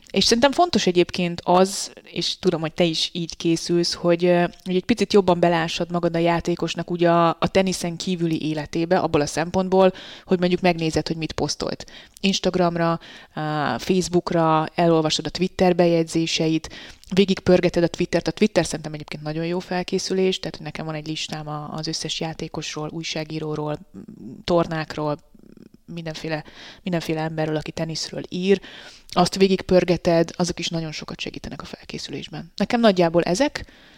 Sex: female